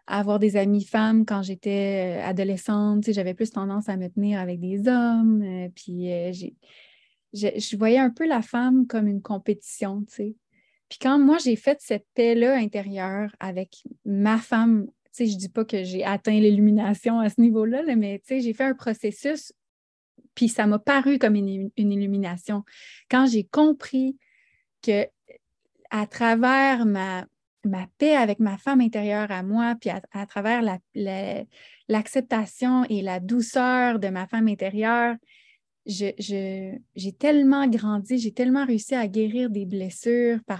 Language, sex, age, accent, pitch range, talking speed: French, female, 20-39, Canadian, 200-245 Hz, 170 wpm